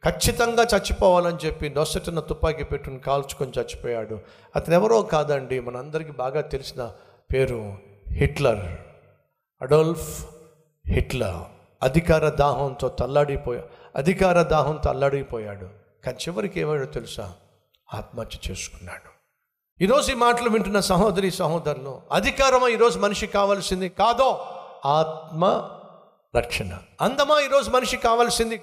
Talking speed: 100 wpm